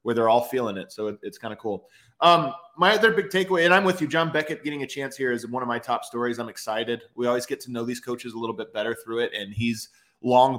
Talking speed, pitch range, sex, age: 280 wpm, 120-175 Hz, male, 20-39